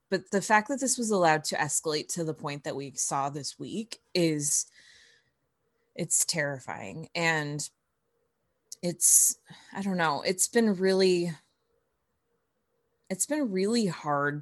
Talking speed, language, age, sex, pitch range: 135 wpm, English, 20-39, female, 150-190 Hz